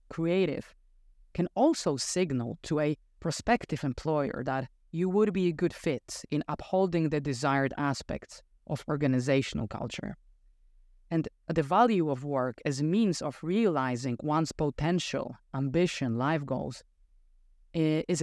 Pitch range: 130-170 Hz